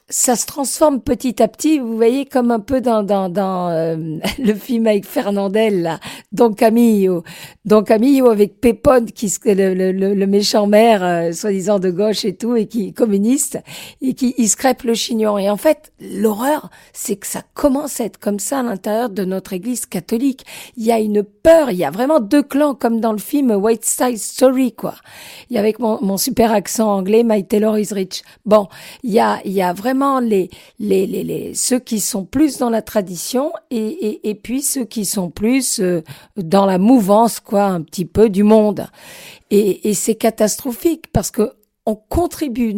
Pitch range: 205-255 Hz